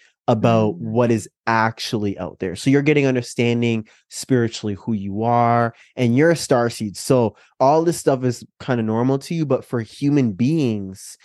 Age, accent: 20-39, American